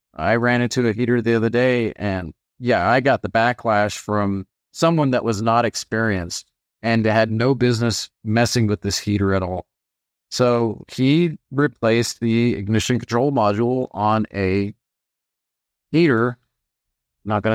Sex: male